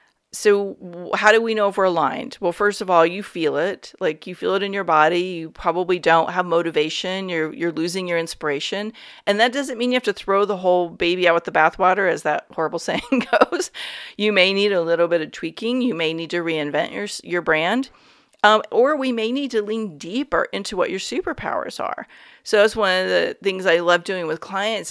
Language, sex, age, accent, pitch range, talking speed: English, female, 40-59, American, 160-210 Hz, 220 wpm